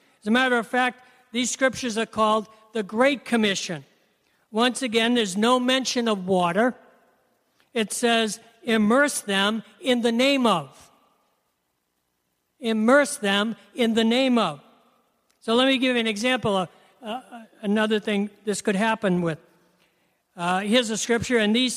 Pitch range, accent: 210-250 Hz, American